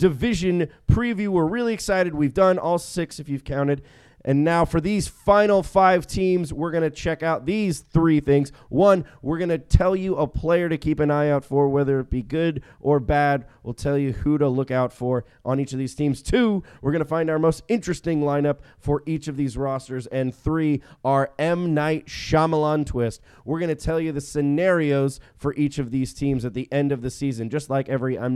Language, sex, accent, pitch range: English, male, American, 130-160 Hz